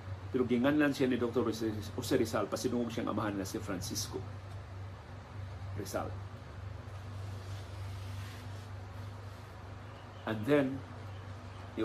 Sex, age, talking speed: male, 50-69, 90 wpm